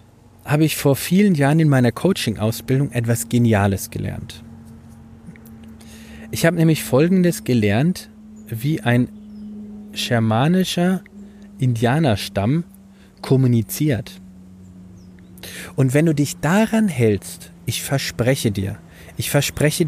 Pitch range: 110-145 Hz